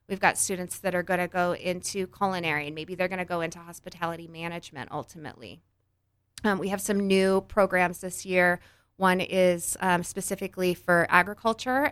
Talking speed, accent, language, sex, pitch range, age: 170 wpm, American, English, female, 165-195 Hz, 20-39